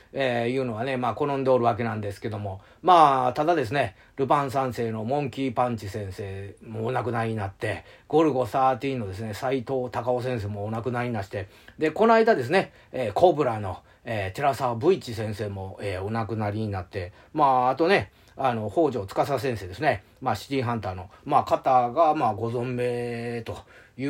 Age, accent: 40-59, native